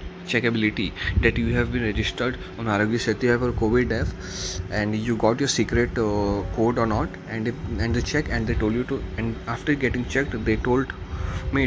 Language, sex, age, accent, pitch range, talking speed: Hindi, male, 20-39, native, 95-120 Hz, 200 wpm